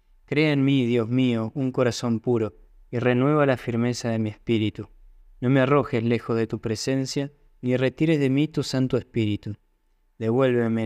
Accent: Argentinian